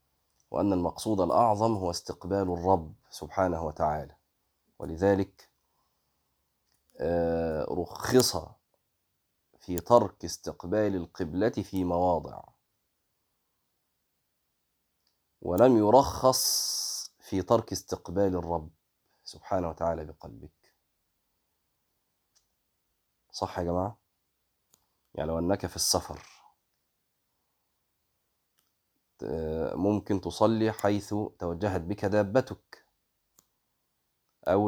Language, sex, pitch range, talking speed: Arabic, male, 85-100 Hz, 70 wpm